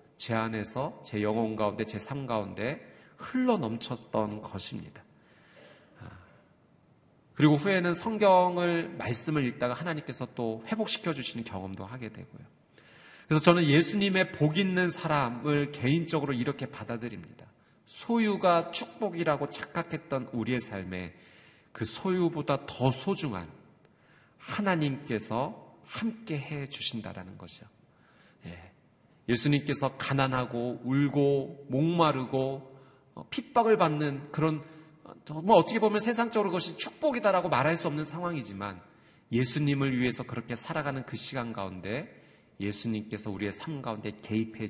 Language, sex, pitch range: Korean, male, 115-165 Hz